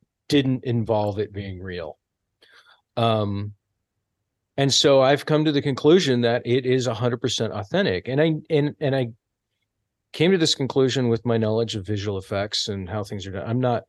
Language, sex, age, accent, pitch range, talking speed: English, male, 40-59, American, 105-135 Hz, 180 wpm